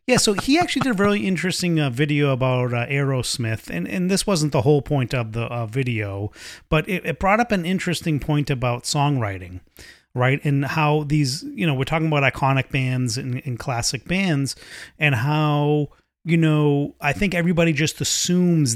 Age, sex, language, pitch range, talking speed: 30-49, male, English, 125-160 Hz, 185 wpm